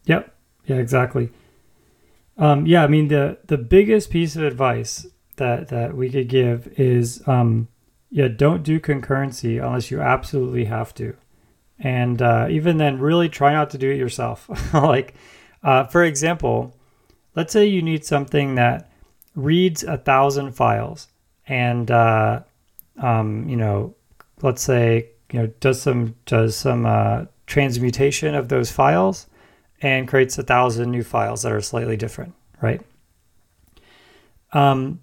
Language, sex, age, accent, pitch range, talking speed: English, male, 30-49, American, 120-150 Hz, 145 wpm